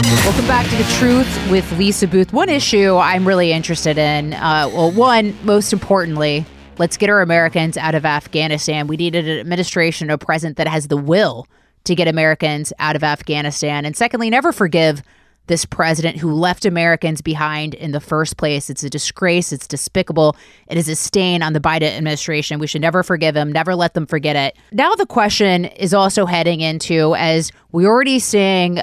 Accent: American